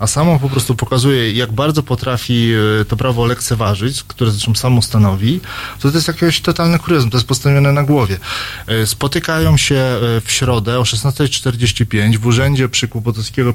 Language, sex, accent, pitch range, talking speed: Polish, male, native, 115-140 Hz, 155 wpm